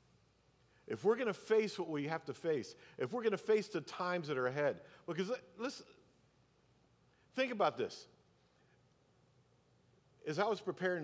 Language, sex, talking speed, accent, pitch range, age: English, male, 160 wpm, American, 140-185 Hz, 50-69